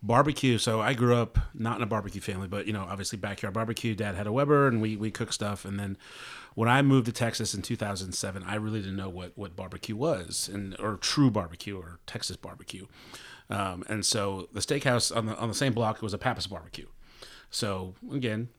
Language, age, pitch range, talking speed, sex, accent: English, 30-49, 100-125 Hz, 215 wpm, male, American